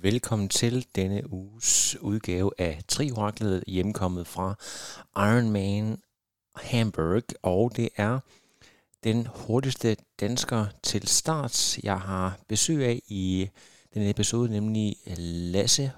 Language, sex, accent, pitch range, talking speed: Danish, male, native, 95-115 Hz, 110 wpm